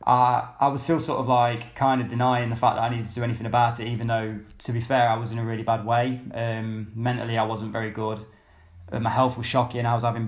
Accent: British